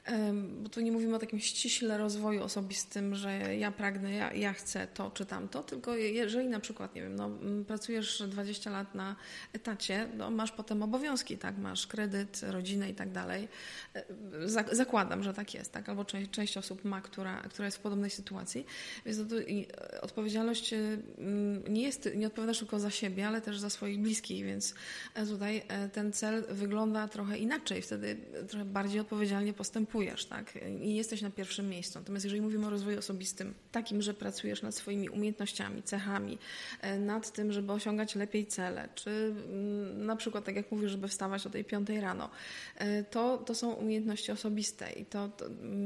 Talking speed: 170 wpm